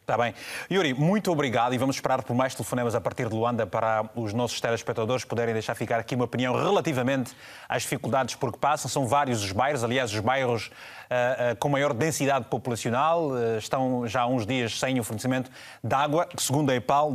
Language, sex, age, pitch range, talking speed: Portuguese, male, 20-39, 120-150 Hz, 205 wpm